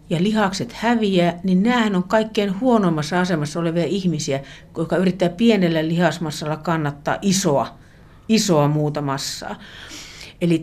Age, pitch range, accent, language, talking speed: 60-79, 155-200 Hz, native, Finnish, 120 wpm